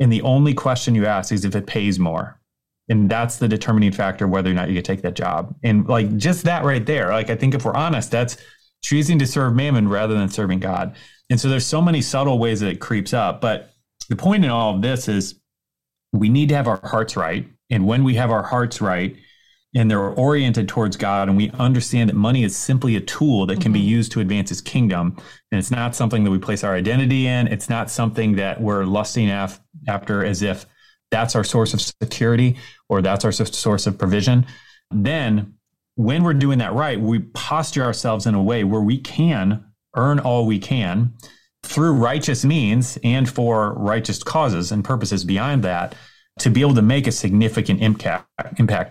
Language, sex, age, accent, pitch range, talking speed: English, male, 30-49, American, 100-125 Hz, 205 wpm